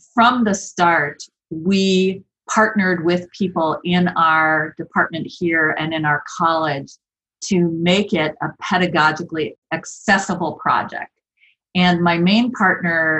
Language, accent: English, American